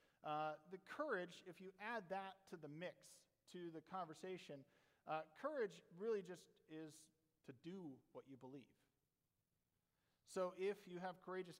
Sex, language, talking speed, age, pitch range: male, English, 145 wpm, 40-59, 150-180 Hz